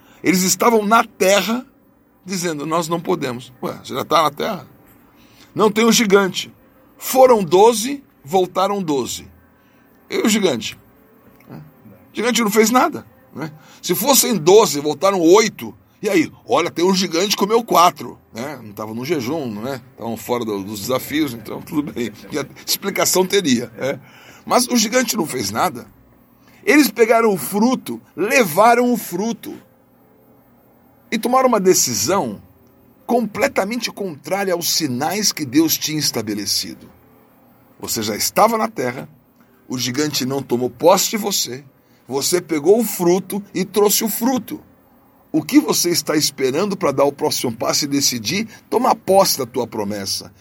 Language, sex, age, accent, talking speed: Portuguese, male, 60-79, Brazilian, 150 wpm